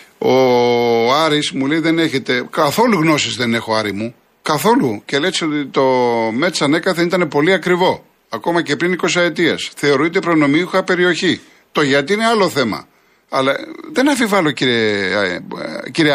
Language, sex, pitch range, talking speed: Greek, male, 105-155 Hz, 145 wpm